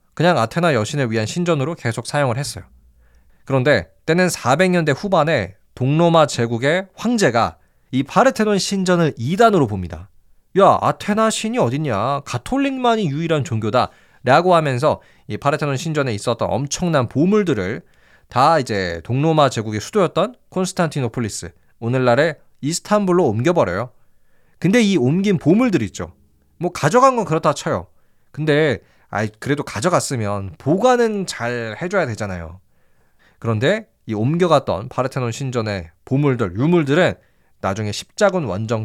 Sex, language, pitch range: male, Korean, 110-175 Hz